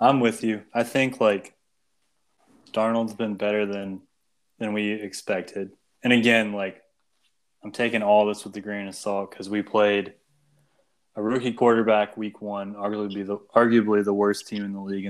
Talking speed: 165 wpm